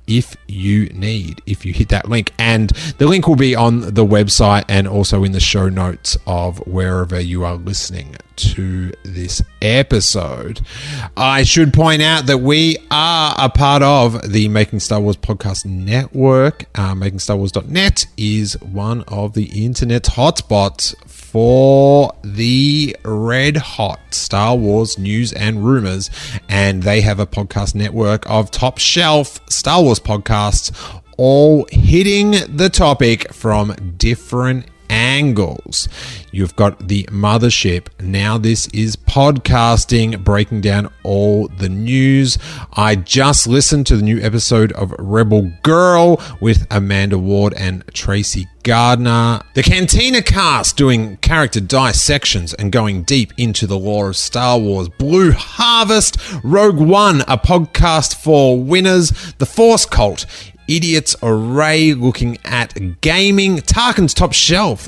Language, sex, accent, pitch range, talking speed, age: English, male, Australian, 100-140 Hz, 135 wpm, 30-49